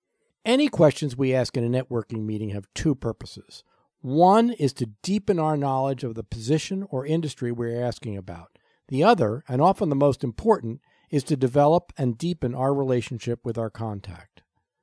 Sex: male